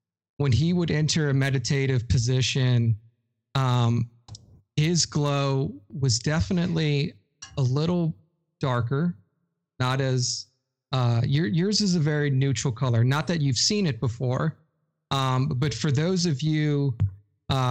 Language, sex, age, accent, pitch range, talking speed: English, male, 30-49, American, 120-145 Hz, 130 wpm